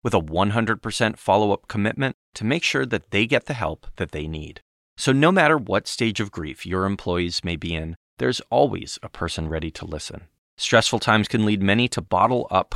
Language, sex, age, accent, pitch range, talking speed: English, male, 30-49, American, 85-115 Hz, 200 wpm